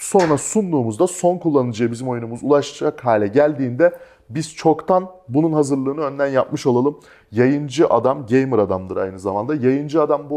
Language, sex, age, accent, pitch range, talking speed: Turkish, male, 30-49, native, 120-160 Hz, 145 wpm